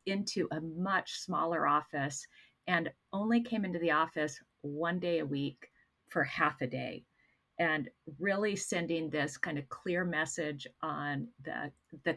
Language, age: English, 50-69